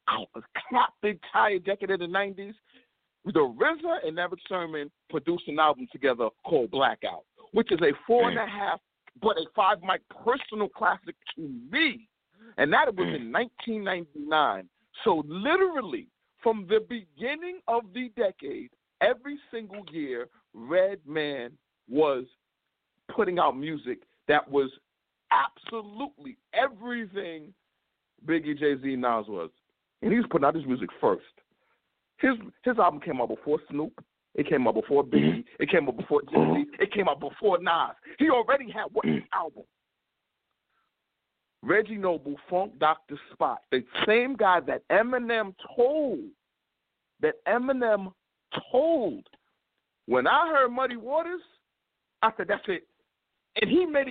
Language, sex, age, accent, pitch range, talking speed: English, male, 50-69, American, 170-280 Hz, 140 wpm